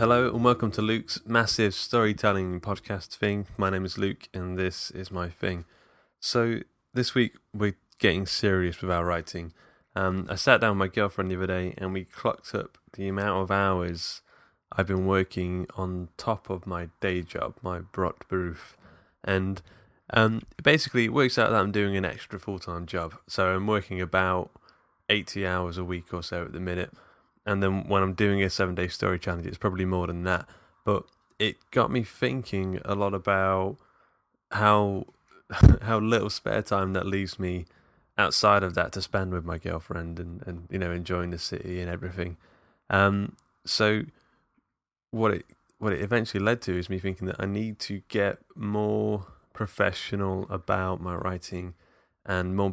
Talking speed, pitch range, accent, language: 175 wpm, 90-105 Hz, British, English